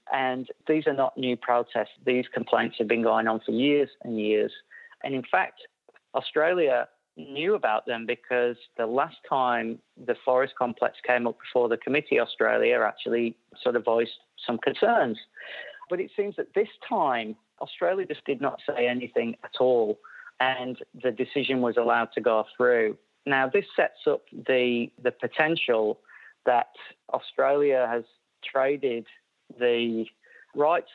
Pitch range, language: 115-140 Hz, English